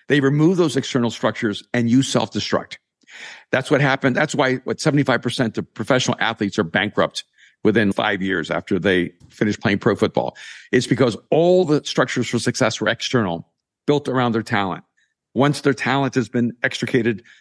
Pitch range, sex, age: 115-145 Hz, male, 50-69